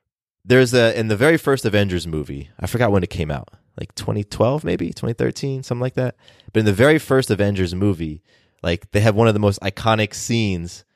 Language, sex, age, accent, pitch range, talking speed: English, male, 20-39, American, 90-115 Hz, 215 wpm